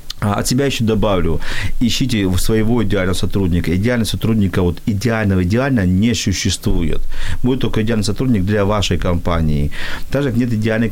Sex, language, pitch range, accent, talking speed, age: male, Ukrainian, 90-115 Hz, native, 135 wpm, 40-59